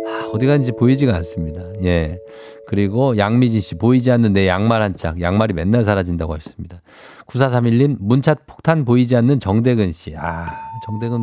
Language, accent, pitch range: Korean, native, 100-125 Hz